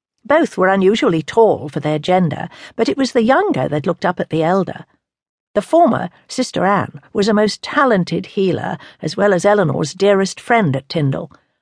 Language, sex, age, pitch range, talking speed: English, female, 60-79, 160-225 Hz, 180 wpm